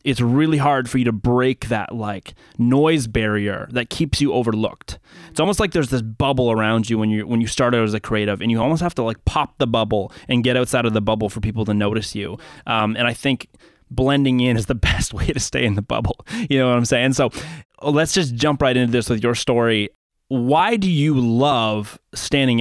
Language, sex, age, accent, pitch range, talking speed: English, male, 20-39, American, 110-130 Hz, 230 wpm